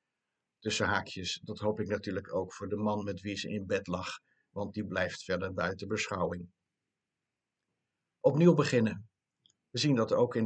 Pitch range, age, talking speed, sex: 100-110 Hz, 60-79, 165 wpm, male